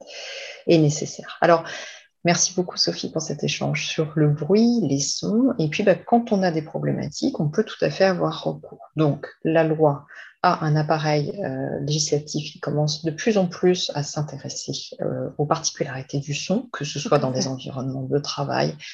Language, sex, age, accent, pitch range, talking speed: French, female, 30-49, French, 145-180 Hz, 175 wpm